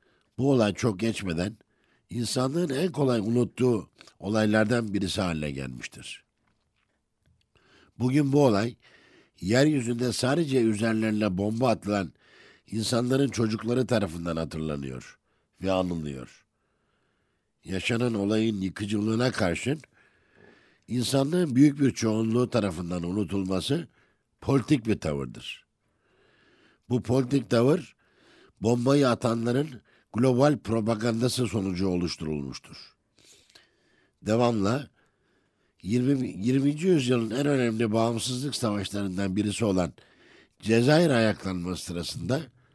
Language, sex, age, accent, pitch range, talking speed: Turkish, male, 60-79, native, 100-130 Hz, 85 wpm